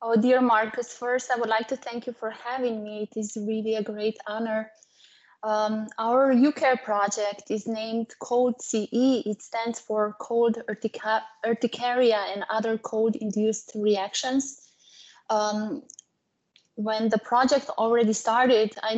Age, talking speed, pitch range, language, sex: 20-39, 135 wpm, 215-245 Hz, English, female